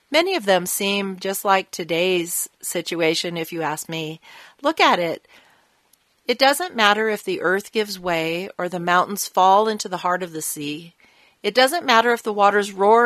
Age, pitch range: 40-59, 170-205 Hz